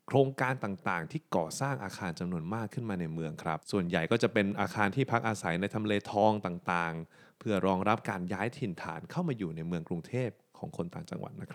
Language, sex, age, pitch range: Thai, male, 20-39, 90-120 Hz